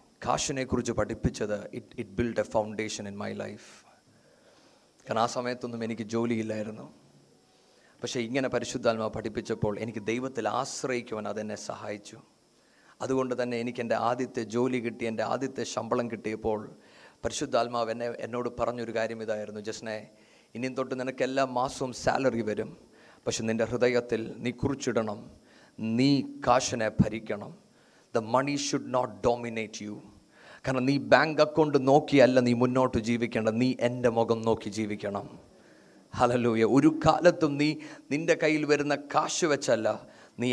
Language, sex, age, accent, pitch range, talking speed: Malayalam, male, 30-49, native, 115-130 Hz, 125 wpm